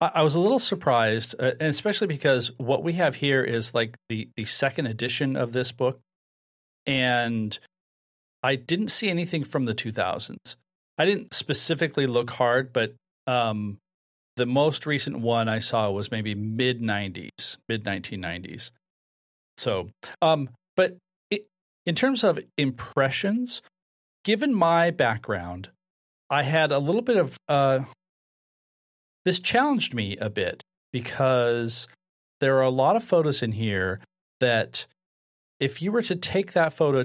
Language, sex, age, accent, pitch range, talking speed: English, male, 40-59, American, 110-155 Hz, 140 wpm